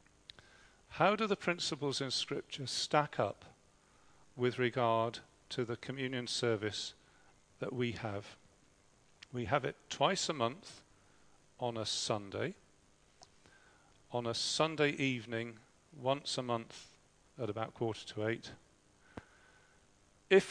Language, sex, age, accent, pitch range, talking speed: English, male, 40-59, British, 115-140 Hz, 115 wpm